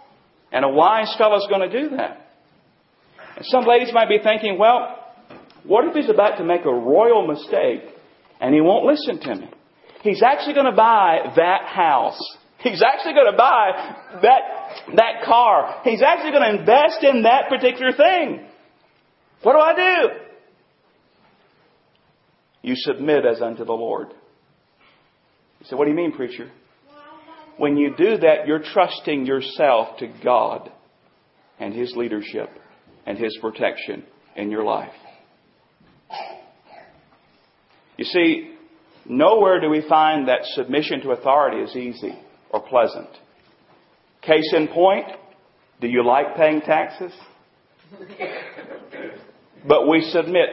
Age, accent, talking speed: 40-59, American, 135 wpm